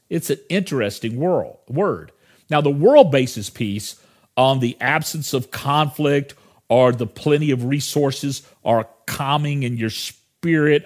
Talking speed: 135 wpm